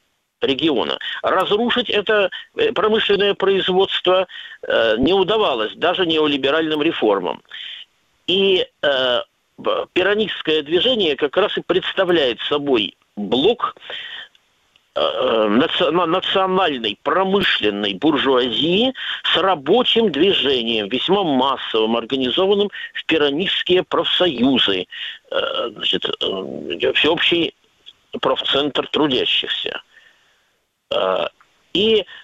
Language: Russian